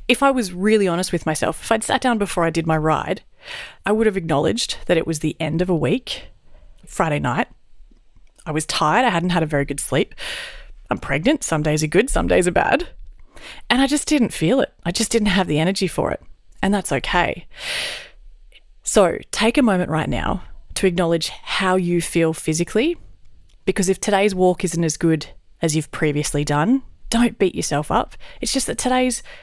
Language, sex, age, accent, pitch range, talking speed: English, female, 30-49, Australian, 160-230 Hz, 200 wpm